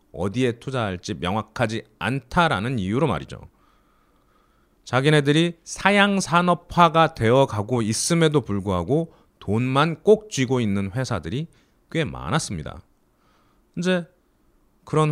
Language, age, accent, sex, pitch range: Korean, 30-49, native, male, 105-165 Hz